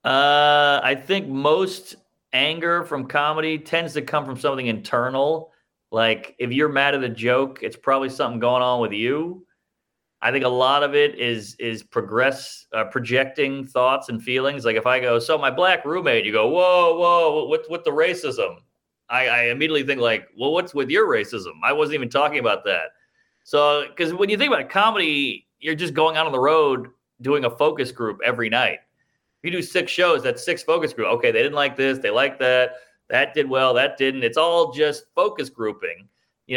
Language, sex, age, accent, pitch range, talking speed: English, male, 30-49, American, 130-185 Hz, 200 wpm